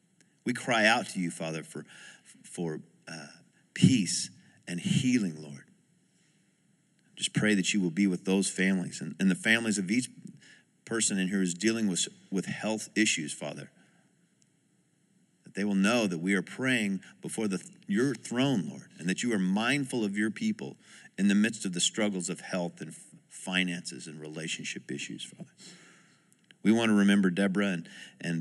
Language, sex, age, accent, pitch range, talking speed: English, male, 50-69, American, 90-110 Hz, 170 wpm